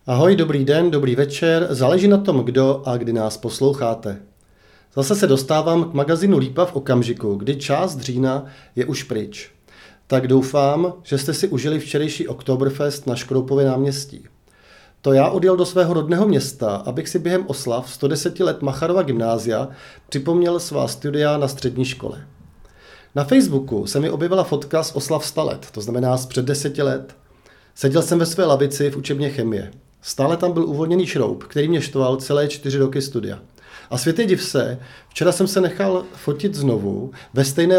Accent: native